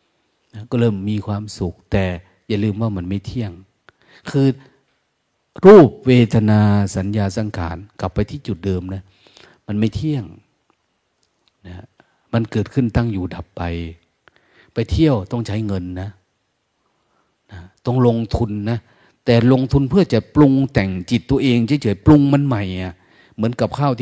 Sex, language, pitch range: male, Thai, 95-120 Hz